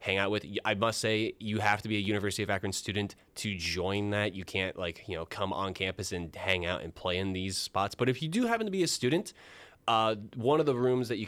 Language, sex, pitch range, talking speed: English, male, 95-115 Hz, 265 wpm